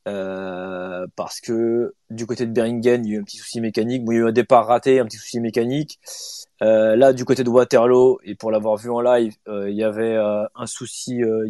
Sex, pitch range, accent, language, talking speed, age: male, 115-140 Hz, French, French, 245 wpm, 20-39